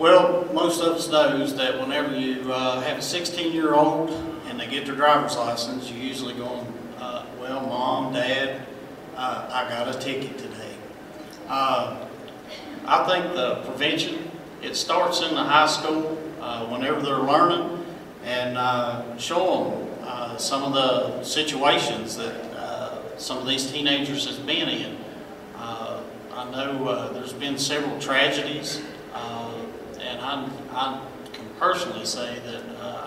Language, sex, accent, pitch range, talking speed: English, male, American, 130-150 Hz, 145 wpm